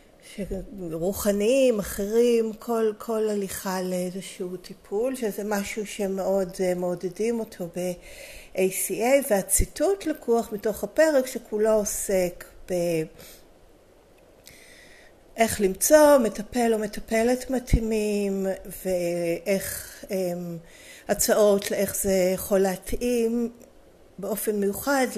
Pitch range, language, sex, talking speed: 190-235 Hz, Hebrew, female, 85 wpm